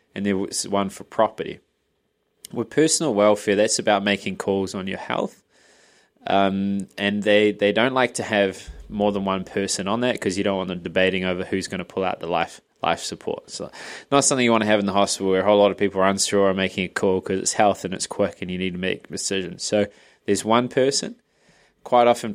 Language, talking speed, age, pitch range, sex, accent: English, 230 wpm, 20-39, 95-110 Hz, male, Australian